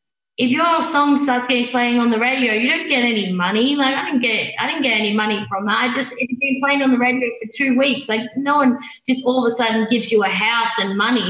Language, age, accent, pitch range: Finnish, 20-39, Australian, 200-255 Hz